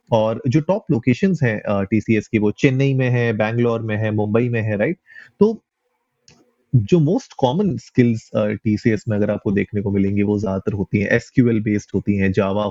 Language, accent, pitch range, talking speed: Hindi, native, 105-125 Hz, 195 wpm